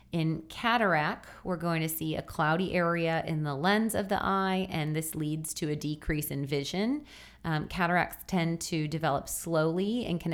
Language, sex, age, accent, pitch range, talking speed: English, female, 30-49, American, 155-185 Hz, 180 wpm